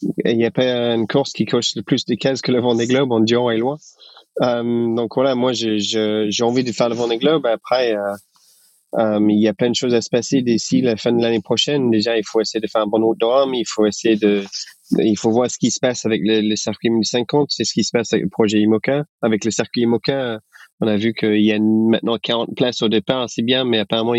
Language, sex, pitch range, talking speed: French, male, 110-130 Hz, 240 wpm